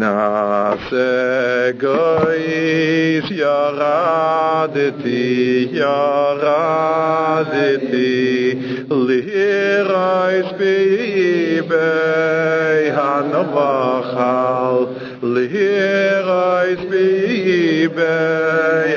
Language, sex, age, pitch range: English, male, 50-69, 125-160 Hz